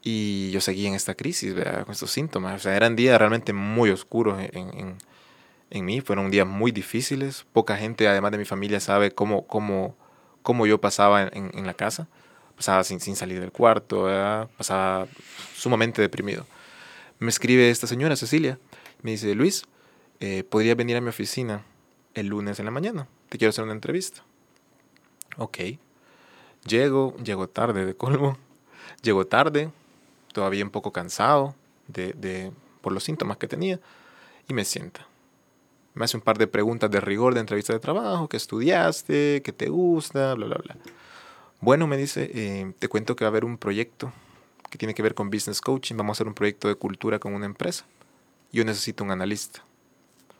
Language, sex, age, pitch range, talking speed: Spanish, male, 20-39, 100-125 Hz, 180 wpm